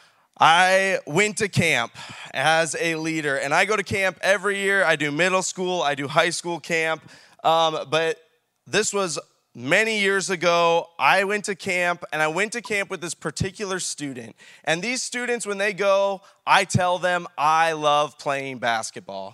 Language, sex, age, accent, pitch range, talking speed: English, male, 20-39, American, 150-195 Hz, 175 wpm